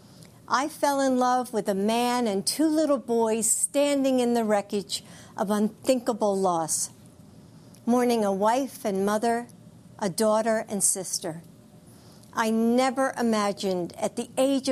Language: English